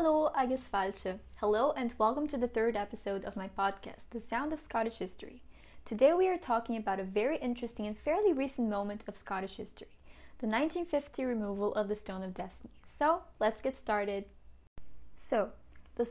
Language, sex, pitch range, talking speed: English, female, 200-265 Hz, 170 wpm